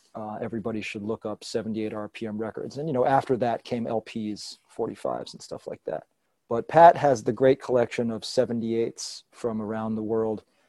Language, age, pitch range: English, 40-59, 110-125 Hz